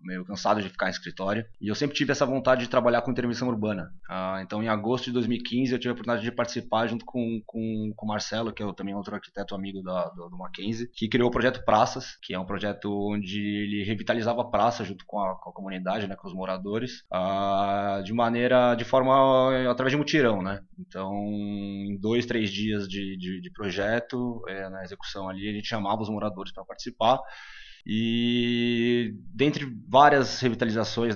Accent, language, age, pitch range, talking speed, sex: Brazilian, Portuguese, 20-39, 105-125 Hz, 195 wpm, male